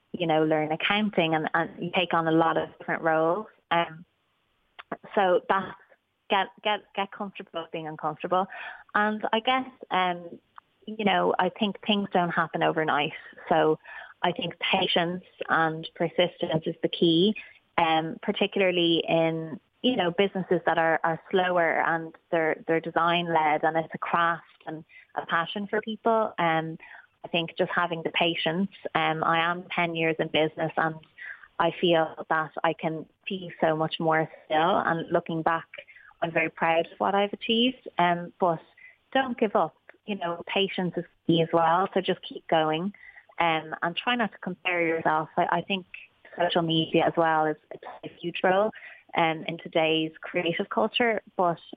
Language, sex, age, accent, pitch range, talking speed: English, female, 20-39, Irish, 160-190 Hz, 170 wpm